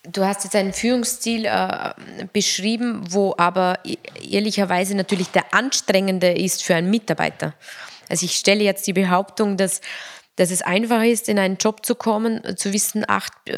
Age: 20-39